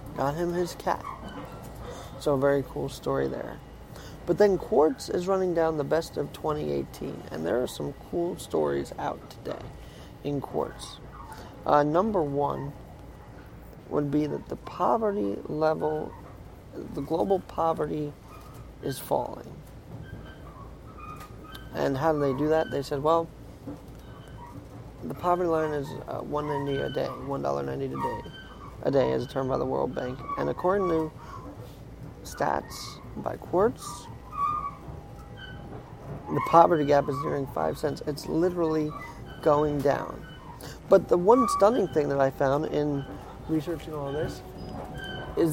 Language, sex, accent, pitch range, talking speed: English, male, American, 140-180 Hz, 135 wpm